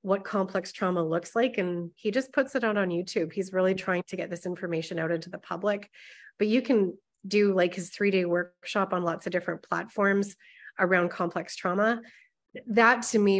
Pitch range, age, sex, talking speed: 180-220 Hz, 30-49, female, 195 wpm